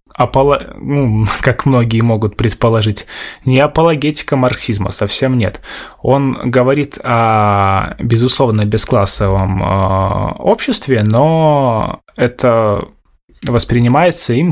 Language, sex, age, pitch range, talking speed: Russian, male, 20-39, 110-130 Hz, 85 wpm